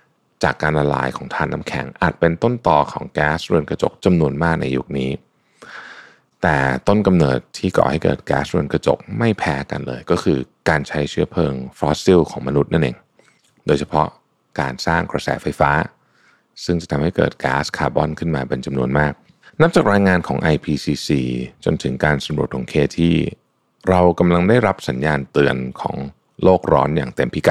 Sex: male